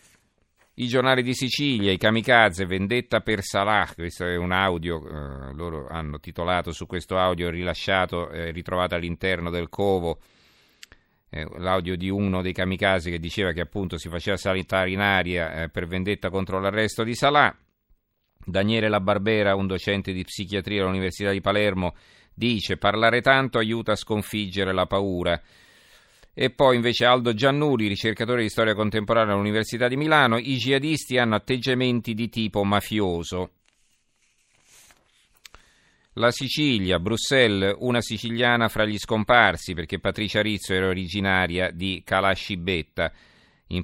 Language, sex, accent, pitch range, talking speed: Italian, male, native, 90-115 Hz, 135 wpm